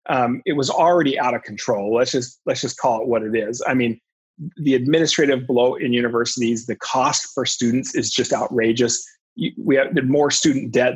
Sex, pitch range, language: male, 125-160 Hz, English